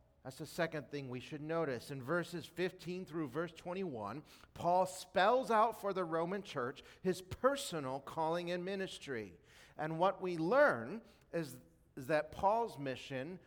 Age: 40-59